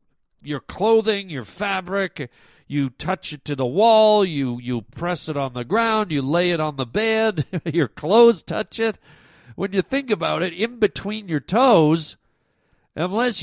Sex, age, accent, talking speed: male, 50-69, American, 165 wpm